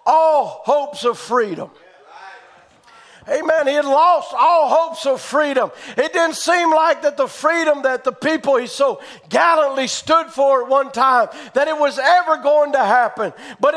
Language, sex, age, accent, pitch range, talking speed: English, male, 50-69, American, 270-320 Hz, 165 wpm